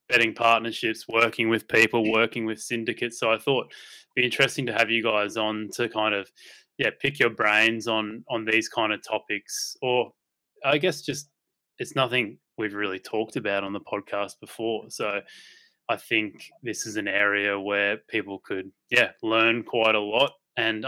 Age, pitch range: 20-39, 105-120 Hz